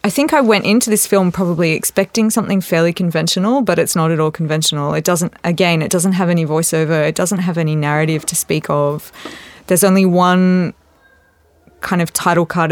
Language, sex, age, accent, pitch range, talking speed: English, female, 20-39, Australian, 155-185 Hz, 195 wpm